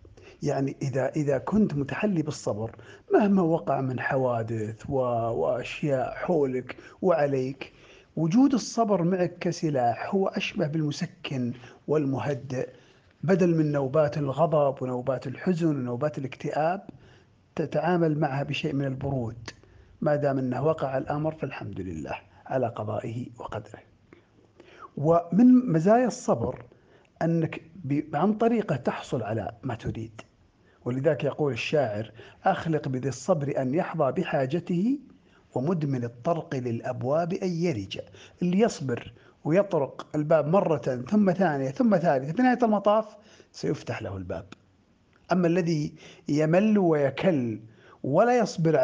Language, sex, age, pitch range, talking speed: Arabic, male, 50-69, 125-170 Hz, 110 wpm